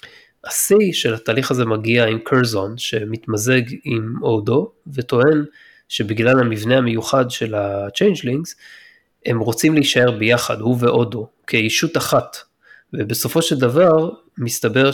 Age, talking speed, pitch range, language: 20-39, 115 wpm, 110-135 Hz, Hebrew